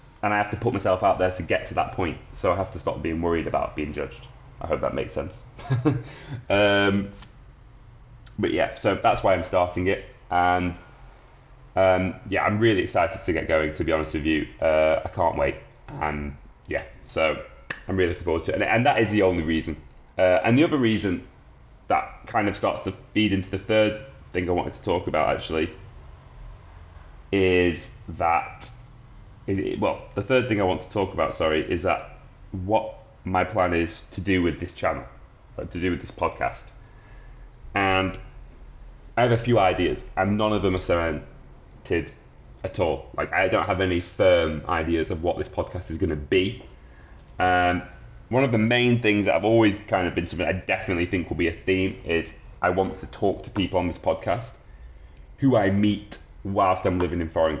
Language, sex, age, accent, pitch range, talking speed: English, male, 20-39, British, 85-110 Hz, 195 wpm